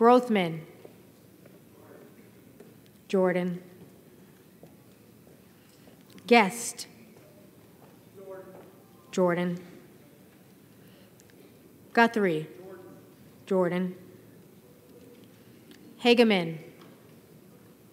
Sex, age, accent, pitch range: female, 30-49, American, 175-215 Hz